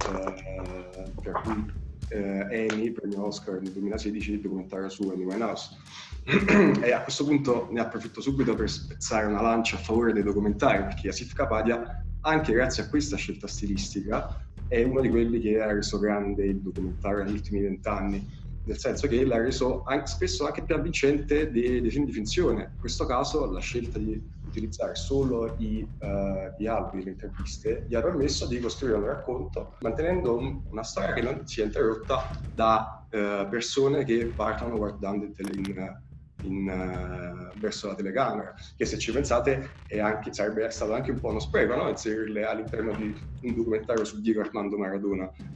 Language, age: Italian, 20-39